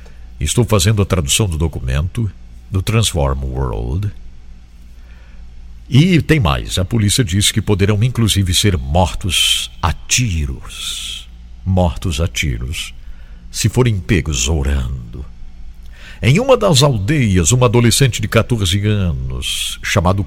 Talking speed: 115 wpm